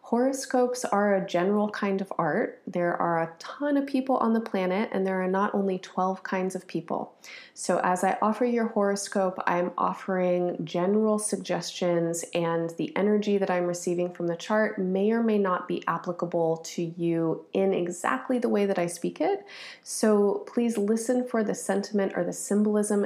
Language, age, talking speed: English, 30-49, 180 wpm